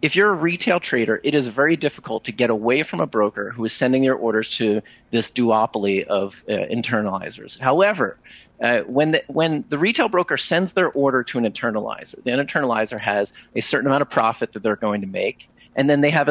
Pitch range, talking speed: 120-180 Hz, 205 wpm